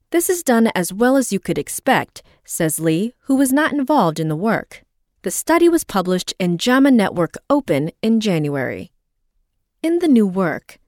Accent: American